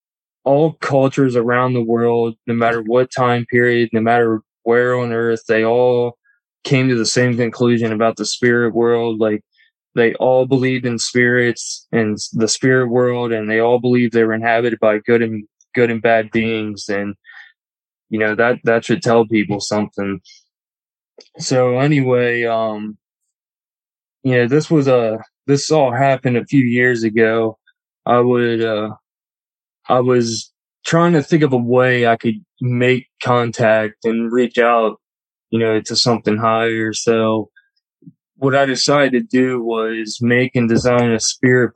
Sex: male